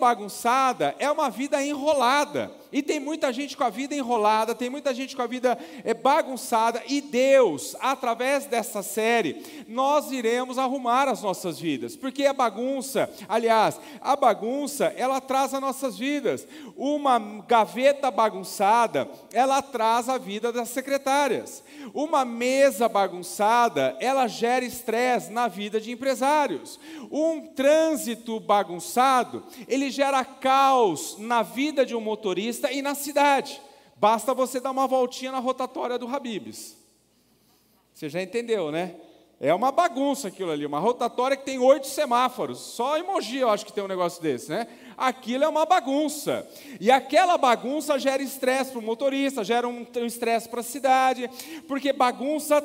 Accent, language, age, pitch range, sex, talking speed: Brazilian, Portuguese, 40-59, 235-285 Hz, male, 145 wpm